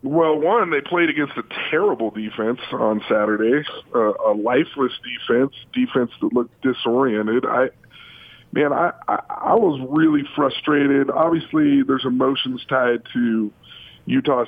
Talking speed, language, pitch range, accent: 130 wpm, English, 120-140 Hz, American